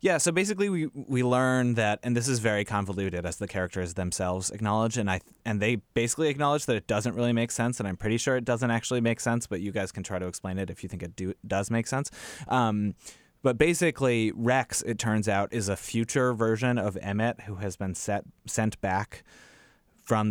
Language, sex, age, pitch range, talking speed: English, male, 20-39, 95-115 Hz, 220 wpm